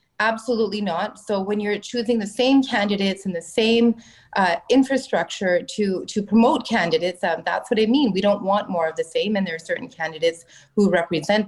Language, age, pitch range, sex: English, 30-49, 180-240 Hz, female